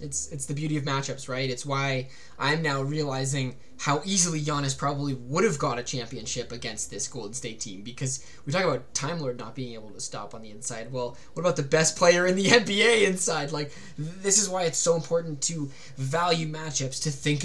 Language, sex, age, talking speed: English, male, 20-39, 215 wpm